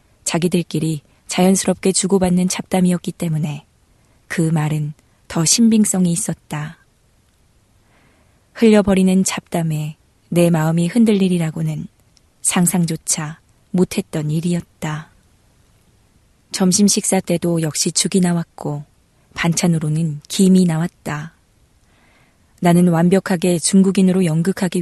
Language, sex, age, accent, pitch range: Korean, female, 20-39, native, 155-190 Hz